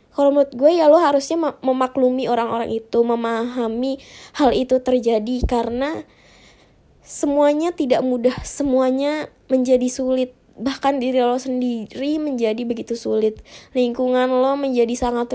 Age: 20-39